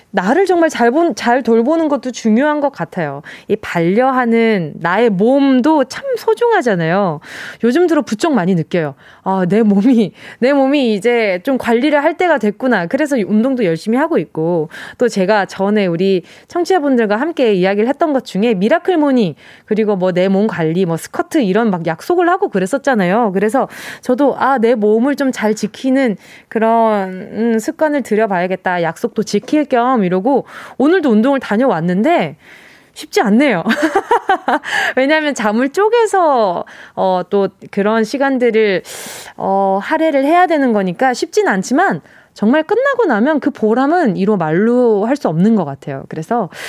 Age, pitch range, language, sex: 20-39, 200-285 Hz, Korean, female